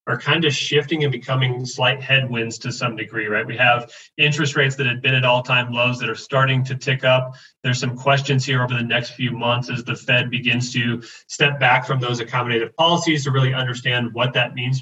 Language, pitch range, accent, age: English, 120-135 Hz, American, 30-49